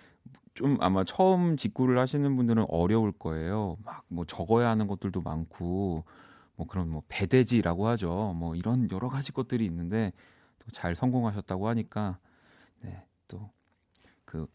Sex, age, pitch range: male, 40-59, 90-120 Hz